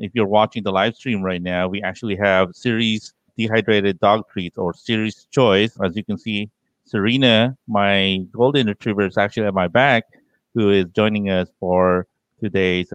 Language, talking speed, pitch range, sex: English, 170 wpm, 100-120 Hz, male